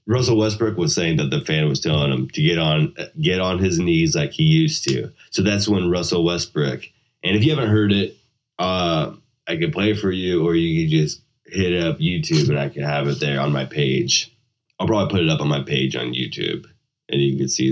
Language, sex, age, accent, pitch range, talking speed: English, male, 20-39, American, 85-120 Hz, 235 wpm